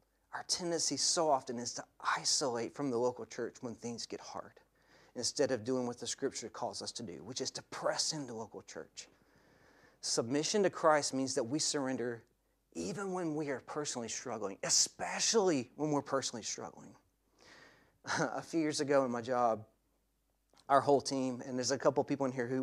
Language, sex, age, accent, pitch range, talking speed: English, male, 30-49, American, 120-155 Hz, 180 wpm